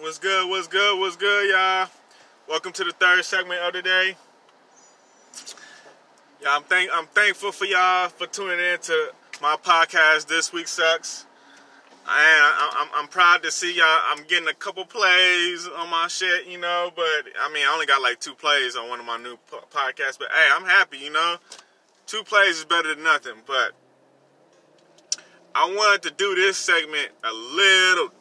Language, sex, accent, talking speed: English, male, American, 180 wpm